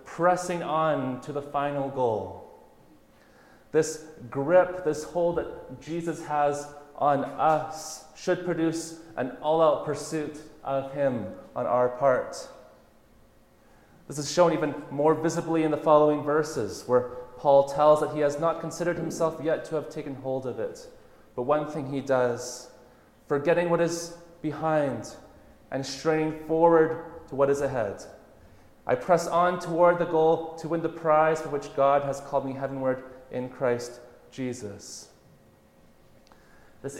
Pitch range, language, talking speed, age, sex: 130-165 Hz, English, 145 wpm, 30-49, male